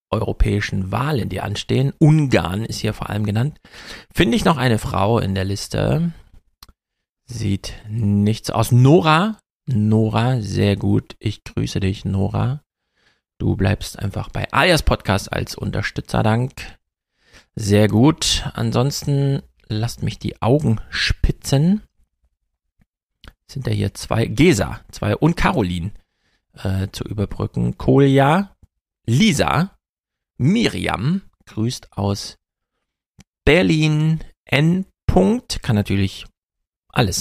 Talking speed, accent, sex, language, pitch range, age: 110 wpm, German, male, German, 100-140 Hz, 40-59